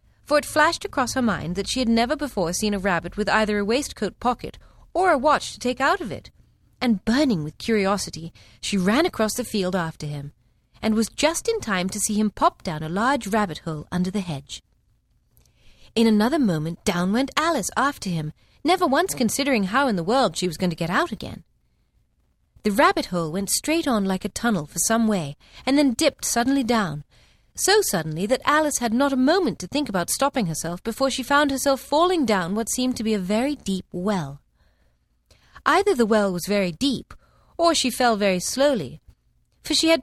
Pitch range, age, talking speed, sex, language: 180-275 Hz, 40-59, 200 wpm, female, English